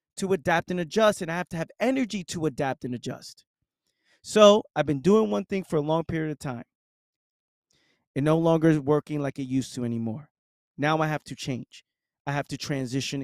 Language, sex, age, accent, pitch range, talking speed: English, male, 30-49, American, 130-165 Hz, 205 wpm